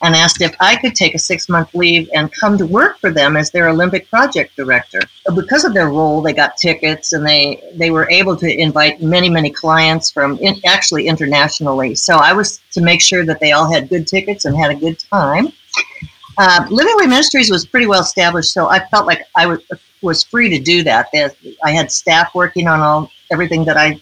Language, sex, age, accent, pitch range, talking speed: English, female, 50-69, American, 150-185 Hz, 215 wpm